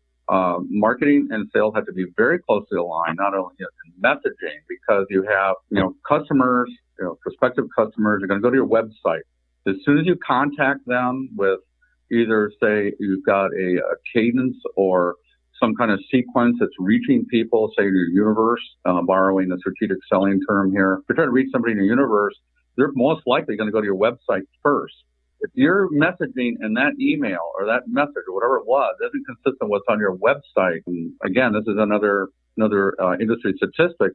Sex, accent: male, American